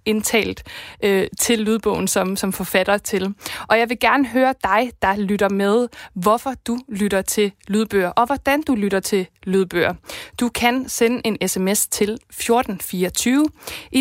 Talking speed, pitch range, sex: 155 wpm, 200-240 Hz, female